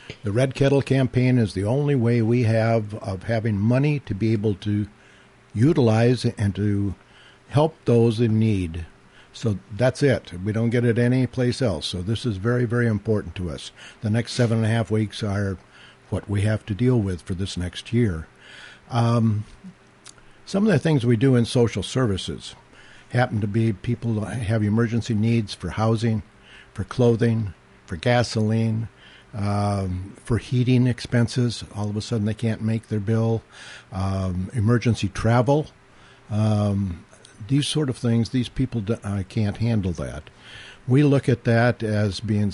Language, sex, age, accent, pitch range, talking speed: English, male, 60-79, American, 105-120 Hz, 160 wpm